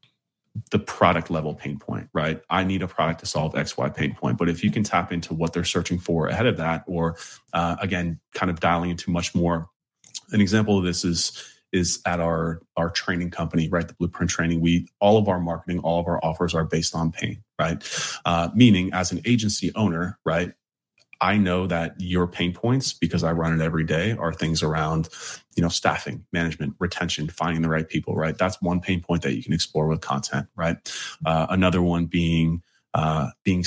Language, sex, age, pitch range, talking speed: English, male, 30-49, 85-95 Hz, 205 wpm